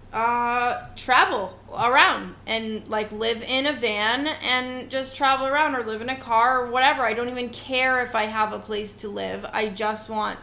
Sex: female